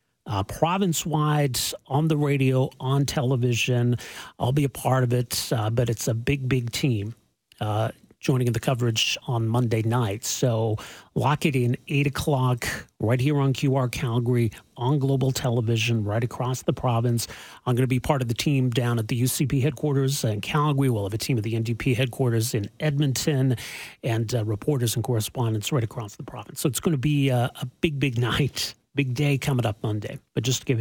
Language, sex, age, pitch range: English, male, 40-59, 115-145 Hz